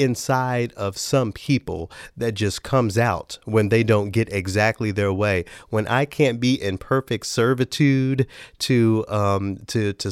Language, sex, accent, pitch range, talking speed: English, male, American, 100-120 Hz, 155 wpm